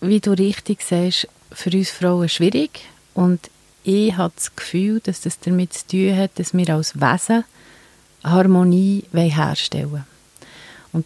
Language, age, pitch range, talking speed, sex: German, 30-49, 165-195 Hz, 145 wpm, female